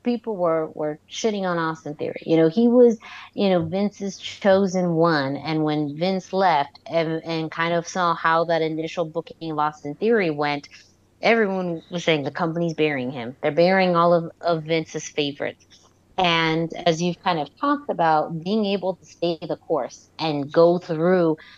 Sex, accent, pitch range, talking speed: female, American, 155-185 Hz, 175 wpm